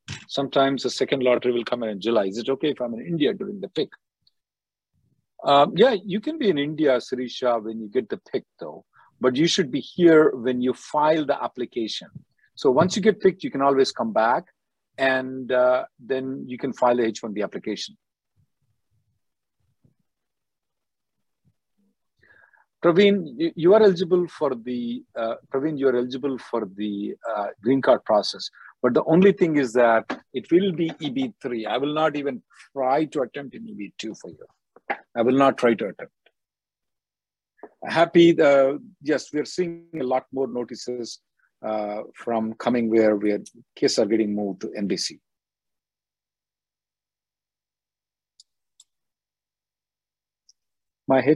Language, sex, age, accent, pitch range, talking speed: English, male, 50-69, Indian, 115-155 Hz, 150 wpm